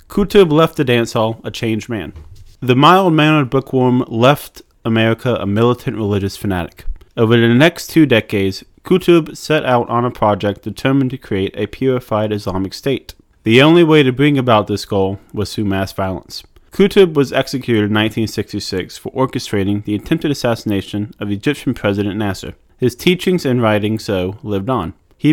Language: English